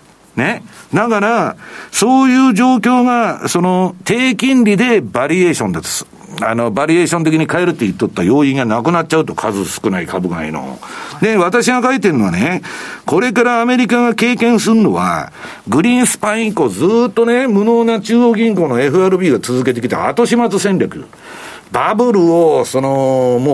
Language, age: Japanese, 60-79